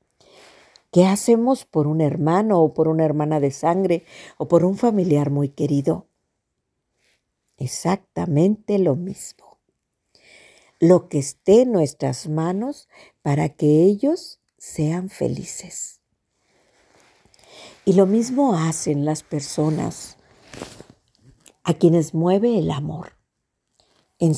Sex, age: female, 50-69